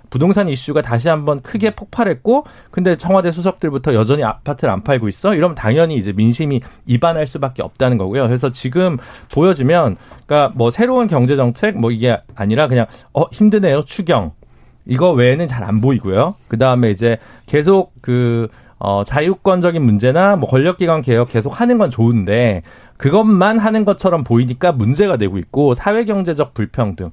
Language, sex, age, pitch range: Korean, male, 40-59, 120-190 Hz